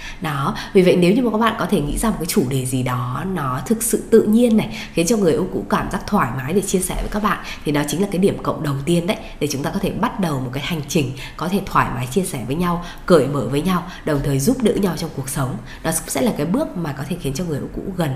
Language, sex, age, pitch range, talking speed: Vietnamese, female, 20-39, 145-205 Hz, 315 wpm